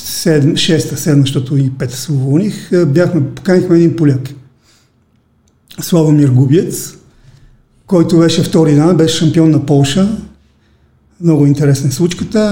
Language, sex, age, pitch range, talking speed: Bulgarian, male, 40-59, 145-195 Hz, 105 wpm